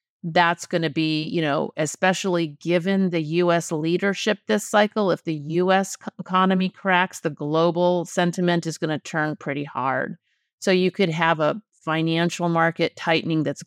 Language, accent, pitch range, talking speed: English, American, 160-185 Hz, 160 wpm